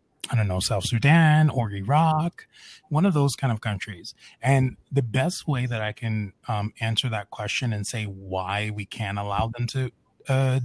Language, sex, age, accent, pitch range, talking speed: English, male, 20-39, American, 105-130 Hz, 185 wpm